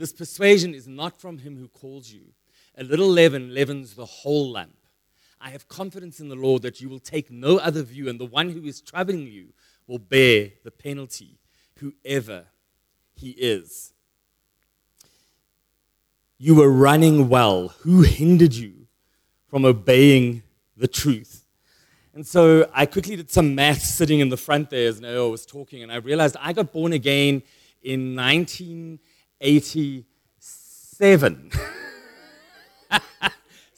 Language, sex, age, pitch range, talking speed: English, male, 30-49, 135-195 Hz, 140 wpm